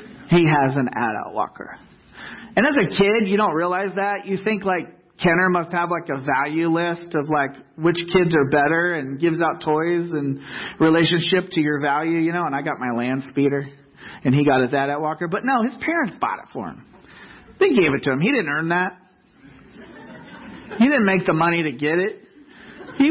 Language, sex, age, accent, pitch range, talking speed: English, male, 40-59, American, 140-190 Hz, 205 wpm